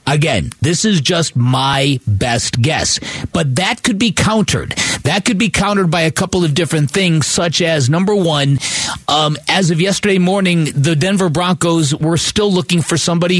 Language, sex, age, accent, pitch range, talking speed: English, male, 50-69, American, 145-175 Hz, 175 wpm